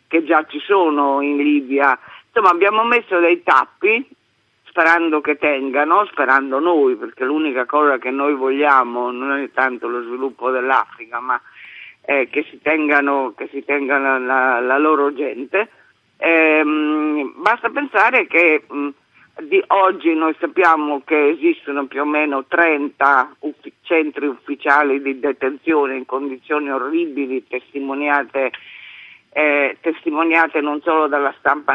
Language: Italian